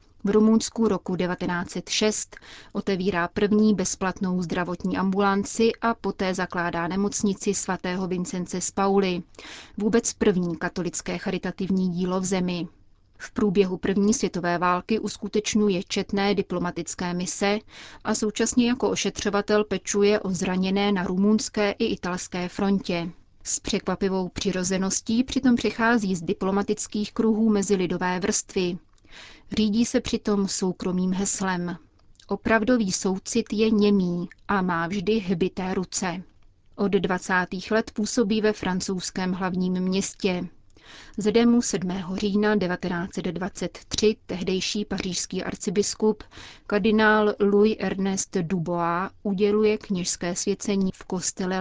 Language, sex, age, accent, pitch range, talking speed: Czech, female, 30-49, native, 185-210 Hz, 110 wpm